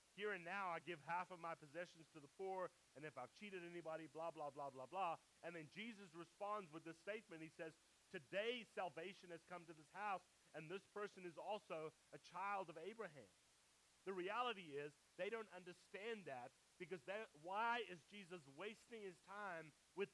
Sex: male